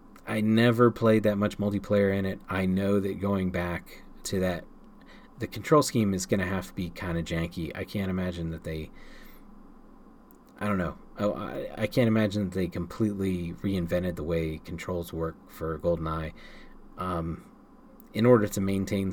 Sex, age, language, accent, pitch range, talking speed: male, 30-49, English, American, 85-110 Hz, 170 wpm